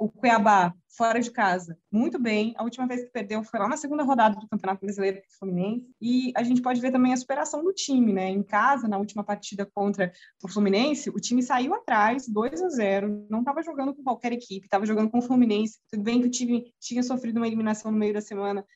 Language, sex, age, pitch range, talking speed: Portuguese, female, 20-39, 205-255 Hz, 235 wpm